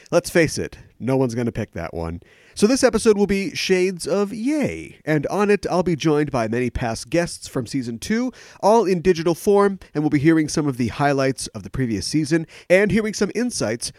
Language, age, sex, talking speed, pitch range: English, 40-59, male, 220 wpm, 110-175 Hz